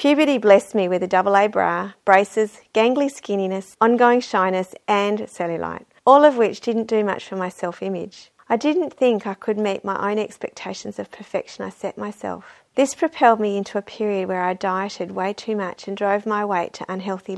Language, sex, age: English, female, 40-59